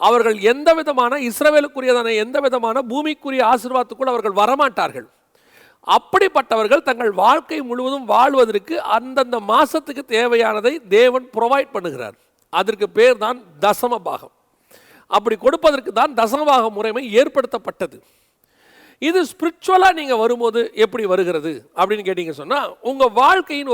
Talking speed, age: 100 wpm, 40-59